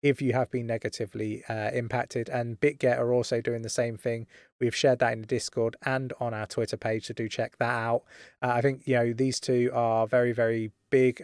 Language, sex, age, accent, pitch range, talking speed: English, male, 20-39, British, 110-135 Hz, 225 wpm